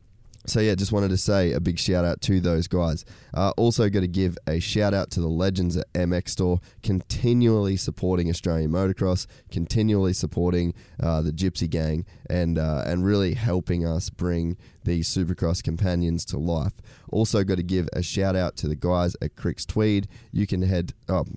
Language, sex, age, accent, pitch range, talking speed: English, male, 20-39, Australian, 85-100 Hz, 180 wpm